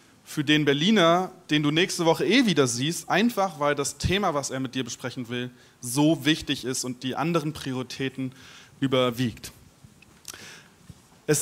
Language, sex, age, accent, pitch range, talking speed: German, male, 30-49, German, 140-165 Hz, 150 wpm